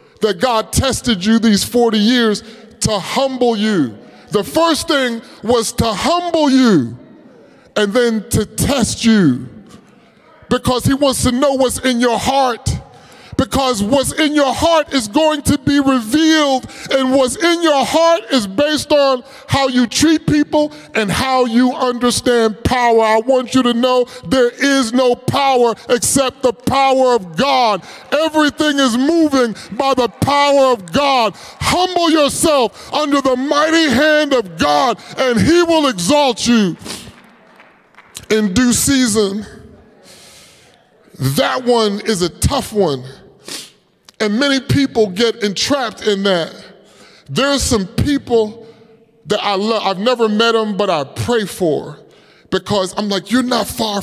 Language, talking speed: English, 145 wpm